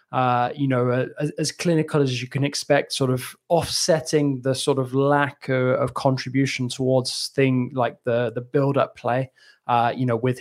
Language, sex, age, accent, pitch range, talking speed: English, male, 20-39, British, 120-145 Hz, 185 wpm